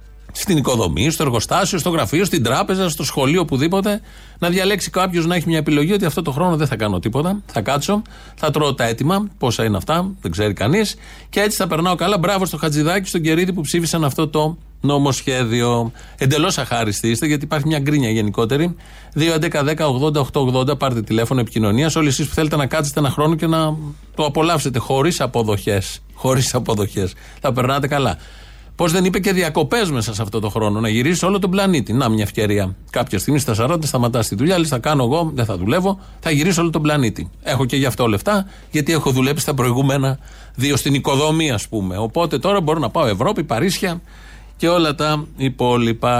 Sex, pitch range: male, 115-165 Hz